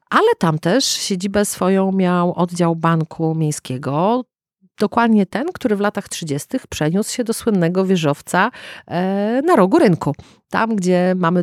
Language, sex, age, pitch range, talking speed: Polish, female, 40-59, 155-205 Hz, 135 wpm